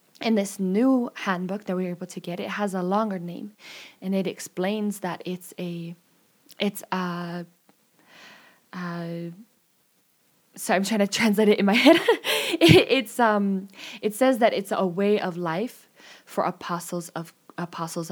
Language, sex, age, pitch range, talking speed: English, female, 20-39, 170-205 Hz, 160 wpm